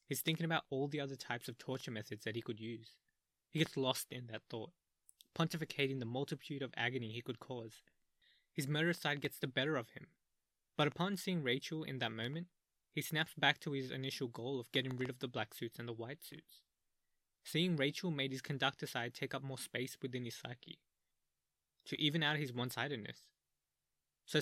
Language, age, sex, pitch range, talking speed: English, 20-39, male, 120-155 Hz, 195 wpm